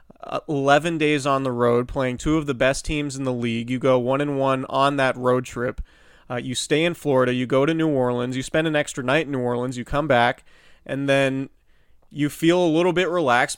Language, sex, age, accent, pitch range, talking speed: English, male, 20-39, American, 130-160 Hz, 230 wpm